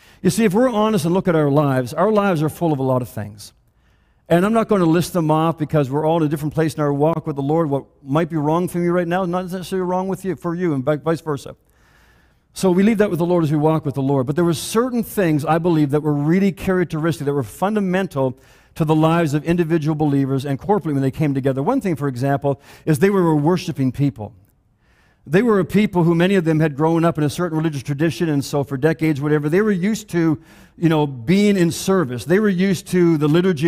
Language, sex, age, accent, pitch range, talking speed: English, male, 50-69, American, 150-190 Hz, 250 wpm